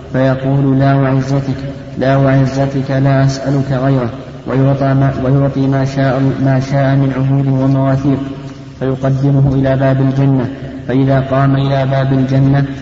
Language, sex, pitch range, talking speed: Arabic, male, 135-140 Hz, 120 wpm